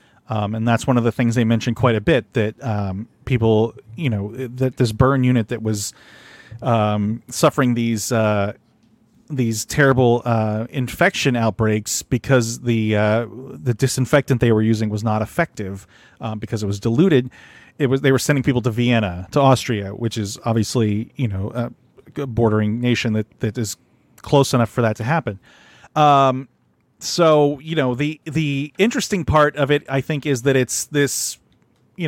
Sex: male